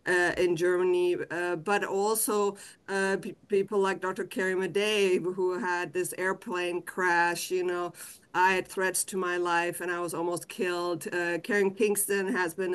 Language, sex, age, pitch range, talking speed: English, female, 50-69, 180-200 Hz, 165 wpm